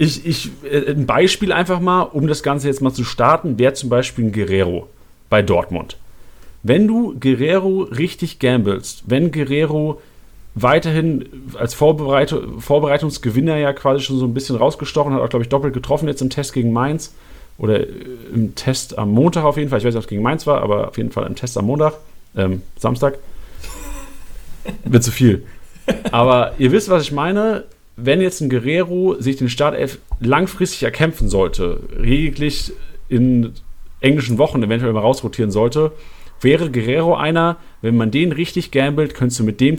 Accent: German